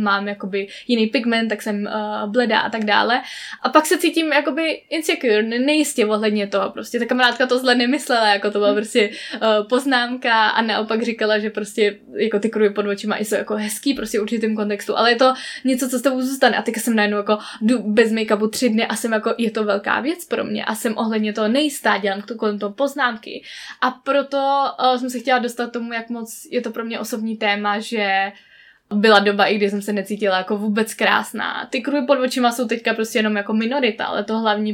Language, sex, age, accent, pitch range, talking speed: Czech, female, 10-29, native, 205-245 Hz, 215 wpm